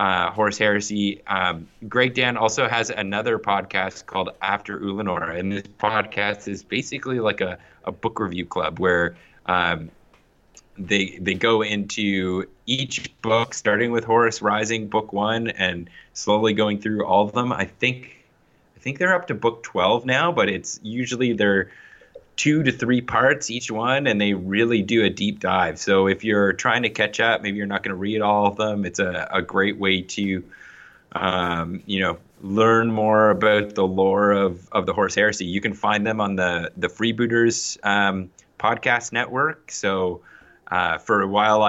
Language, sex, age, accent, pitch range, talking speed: English, male, 20-39, American, 95-110 Hz, 175 wpm